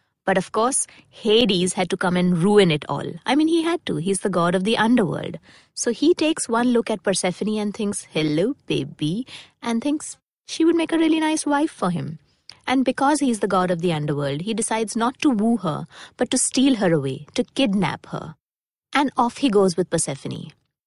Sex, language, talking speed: female, English, 205 wpm